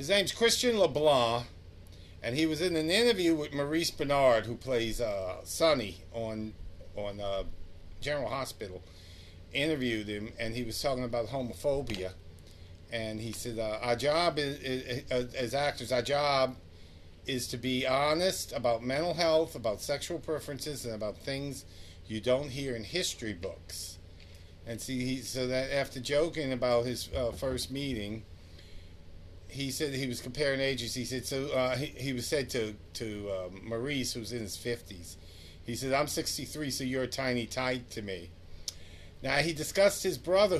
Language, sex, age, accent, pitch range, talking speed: English, male, 50-69, American, 95-135 Hz, 165 wpm